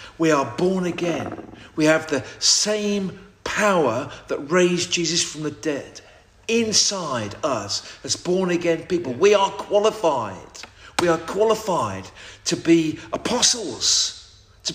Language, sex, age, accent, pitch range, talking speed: English, male, 50-69, British, 130-205 Hz, 120 wpm